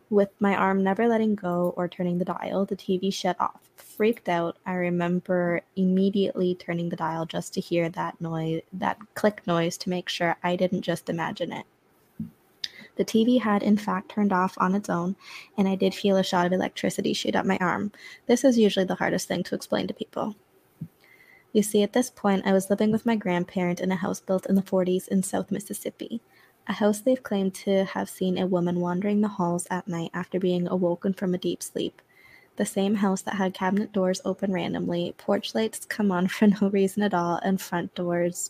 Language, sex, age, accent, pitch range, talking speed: English, female, 20-39, American, 180-200 Hz, 205 wpm